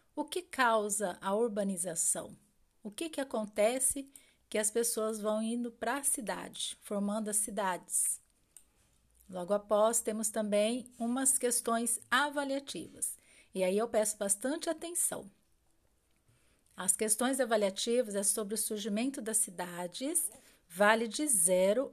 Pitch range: 200-255 Hz